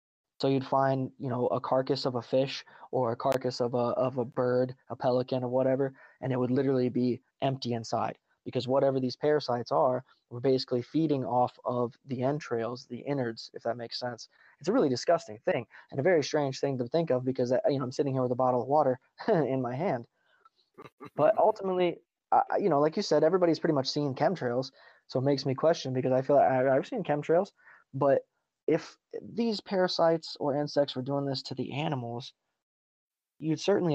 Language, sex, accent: English, male, American